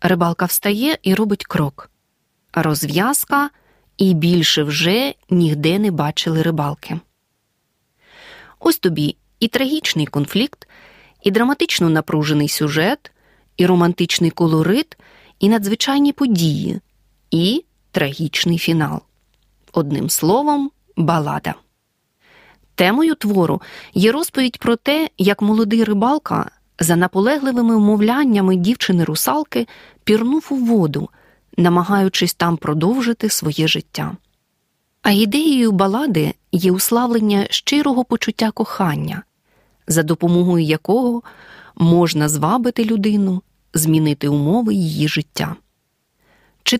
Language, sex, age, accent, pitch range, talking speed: Ukrainian, female, 30-49, native, 165-240 Hz, 95 wpm